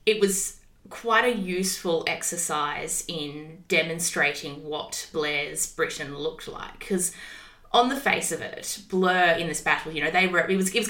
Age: 20-39